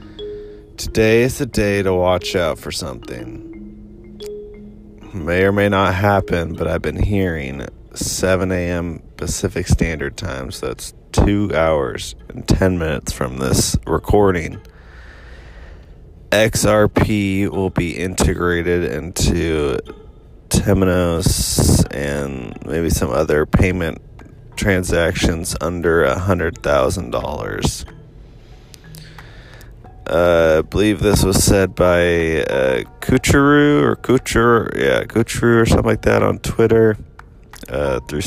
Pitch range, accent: 85-110 Hz, American